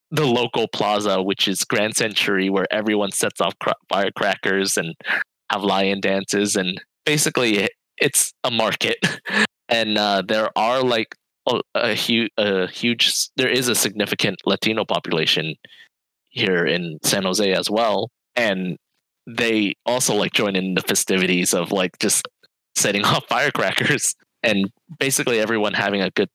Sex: male